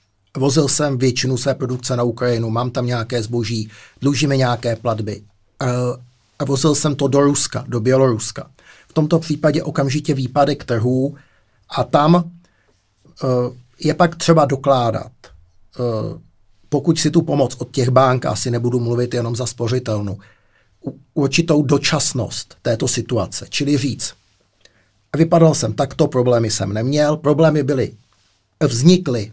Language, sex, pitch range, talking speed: Czech, male, 115-145 Hz, 135 wpm